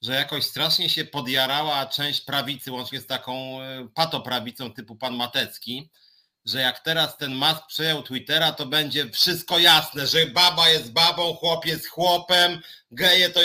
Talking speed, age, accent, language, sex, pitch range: 150 wpm, 30-49, native, Polish, male, 150-190 Hz